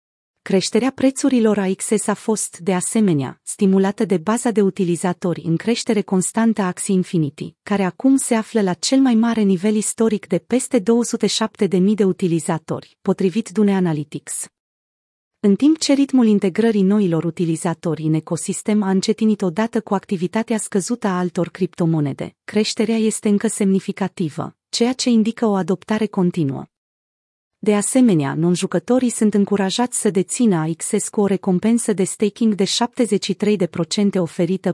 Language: Romanian